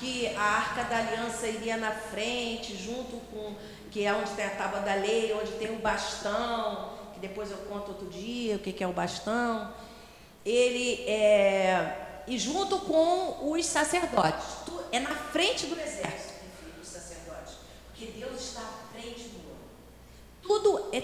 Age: 40-59